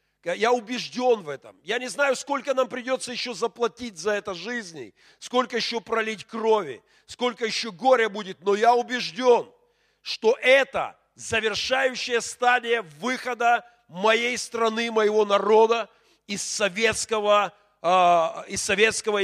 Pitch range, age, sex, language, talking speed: 180-235 Hz, 40-59, male, Russian, 120 wpm